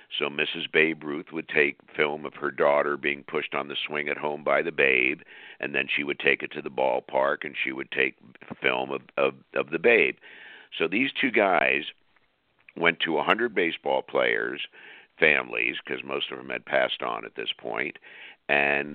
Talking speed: 185 wpm